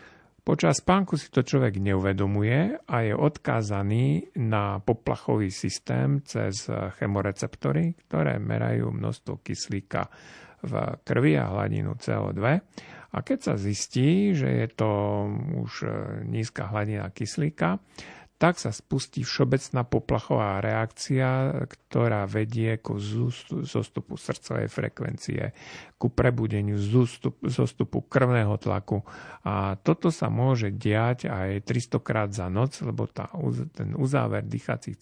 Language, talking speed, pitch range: Slovak, 115 wpm, 105-140 Hz